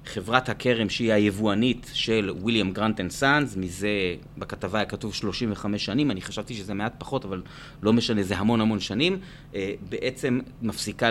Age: 30-49